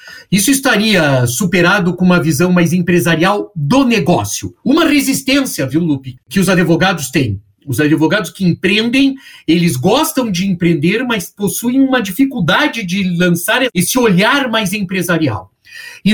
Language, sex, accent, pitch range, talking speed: Portuguese, male, Brazilian, 165-230 Hz, 140 wpm